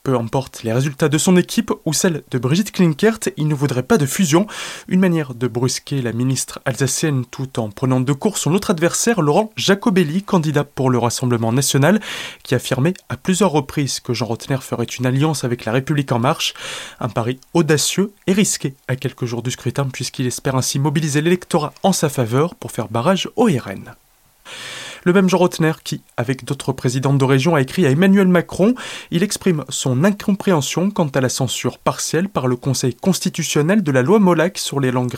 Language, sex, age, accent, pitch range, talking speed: French, male, 20-39, French, 130-180 Hz, 195 wpm